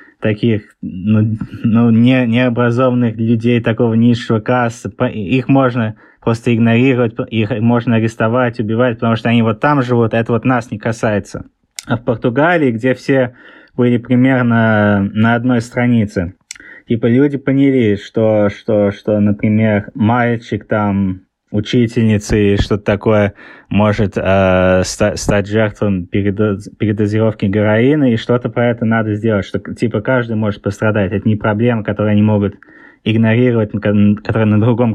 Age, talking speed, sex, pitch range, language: 20-39, 135 wpm, male, 105-120 Hz, Russian